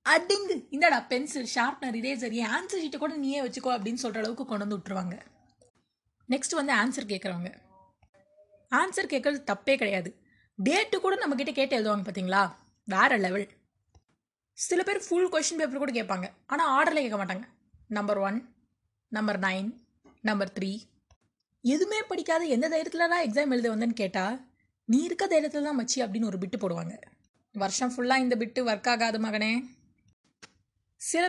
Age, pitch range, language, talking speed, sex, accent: 20-39, 205-285 Hz, Tamil, 140 wpm, female, native